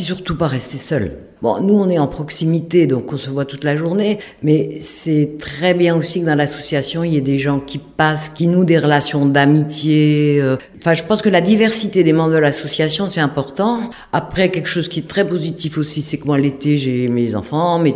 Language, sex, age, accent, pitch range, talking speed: French, female, 50-69, French, 135-185 Hz, 215 wpm